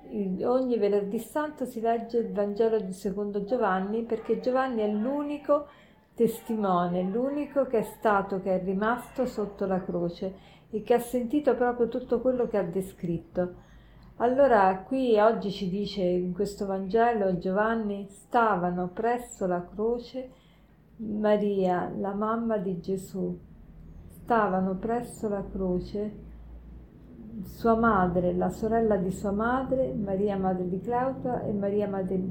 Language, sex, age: Italian, female, 50-69